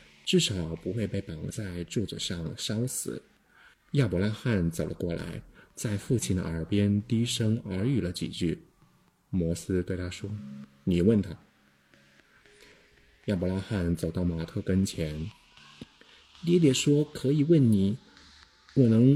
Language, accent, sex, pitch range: Chinese, native, male, 85-110 Hz